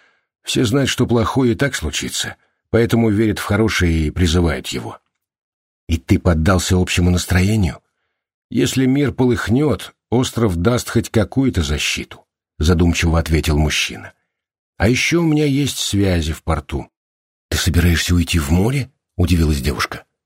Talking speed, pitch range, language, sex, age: 135 wpm, 85-115 Hz, Russian, male, 50-69